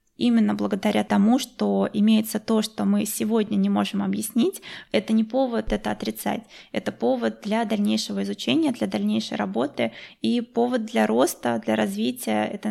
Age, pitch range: 20-39, 195-225 Hz